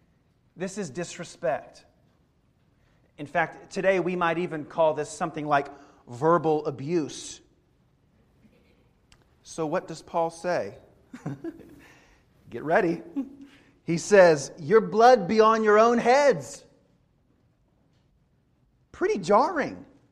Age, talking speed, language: 40-59, 100 wpm, English